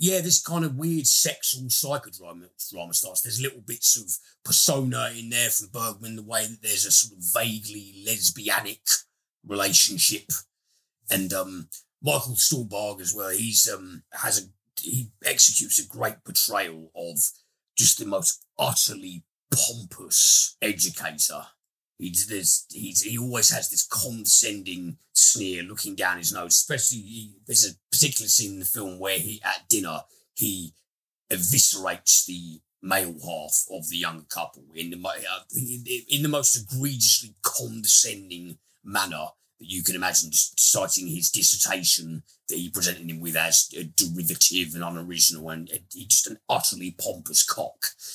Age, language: 40-59, English